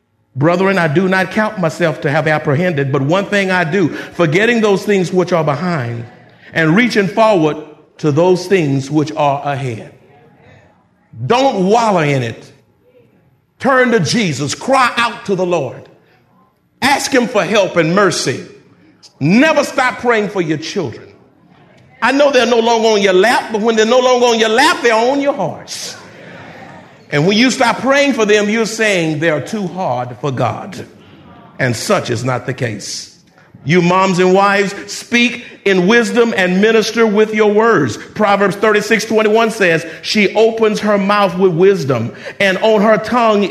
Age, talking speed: 50-69, 165 wpm